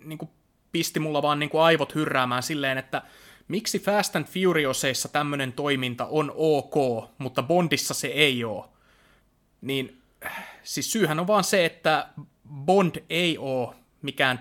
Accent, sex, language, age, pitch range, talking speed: native, male, Finnish, 30-49, 130-165 Hz, 135 wpm